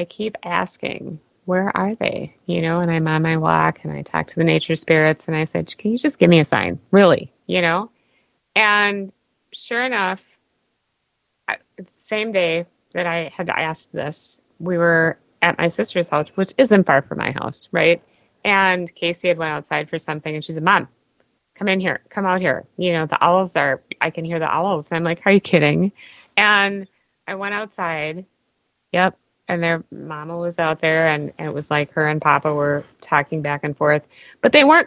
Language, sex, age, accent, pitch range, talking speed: English, female, 30-49, American, 150-190 Hz, 200 wpm